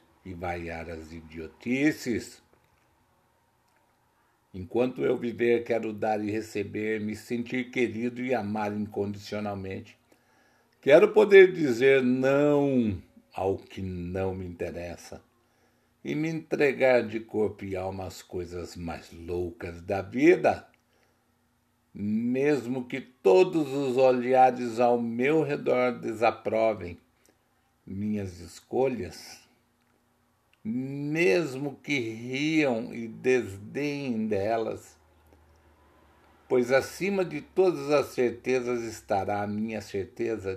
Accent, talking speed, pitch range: Brazilian, 100 wpm, 100-125 Hz